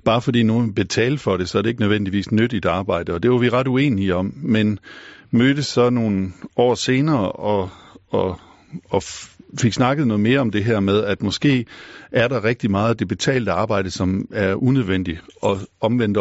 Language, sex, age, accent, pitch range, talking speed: Danish, male, 50-69, native, 95-125 Hz, 195 wpm